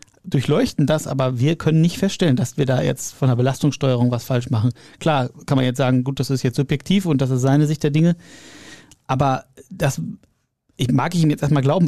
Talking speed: 210 wpm